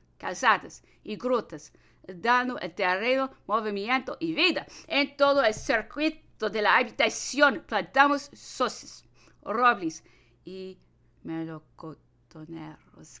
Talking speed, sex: 95 wpm, female